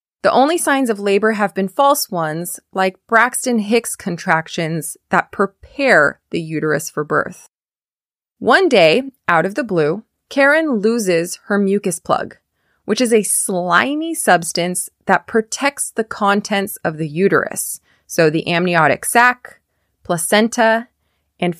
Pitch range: 175-245 Hz